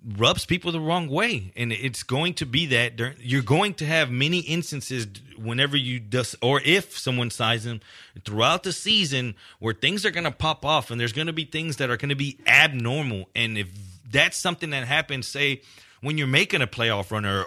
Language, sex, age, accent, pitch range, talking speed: English, male, 30-49, American, 125-165 Hz, 215 wpm